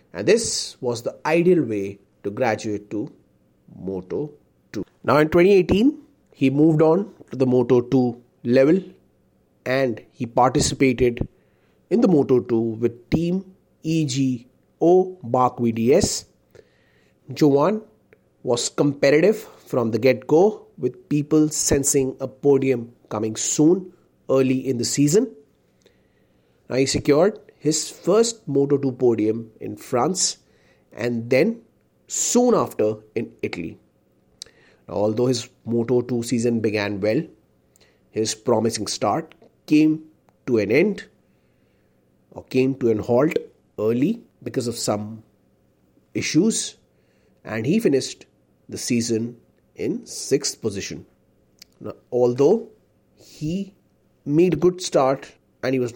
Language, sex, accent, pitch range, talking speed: Hindi, male, native, 110-150 Hz, 115 wpm